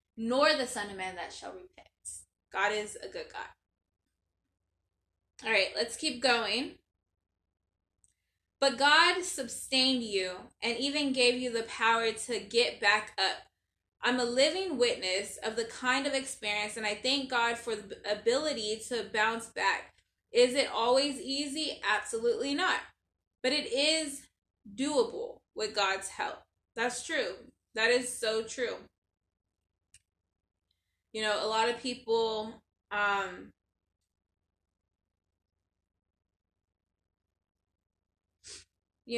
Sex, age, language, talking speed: female, 10-29, English, 120 wpm